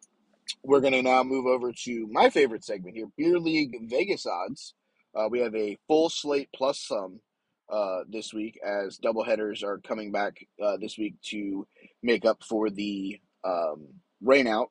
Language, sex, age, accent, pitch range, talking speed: English, male, 20-39, American, 115-150 Hz, 165 wpm